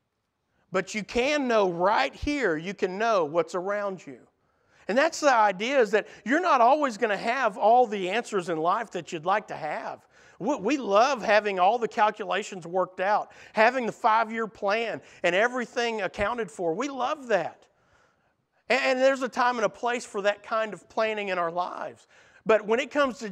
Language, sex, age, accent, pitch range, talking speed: English, male, 50-69, American, 190-250 Hz, 190 wpm